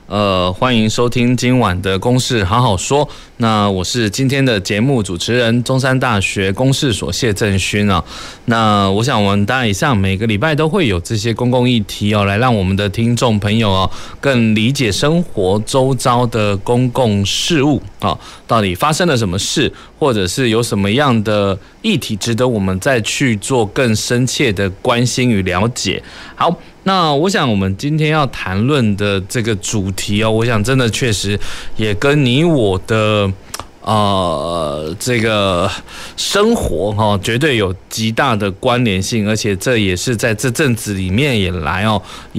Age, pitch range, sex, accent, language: 20-39, 100-125 Hz, male, native, Chinese